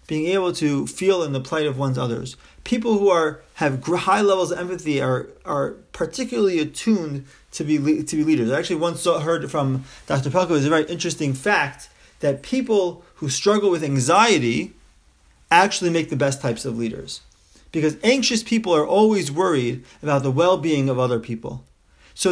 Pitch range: 130-185 Hz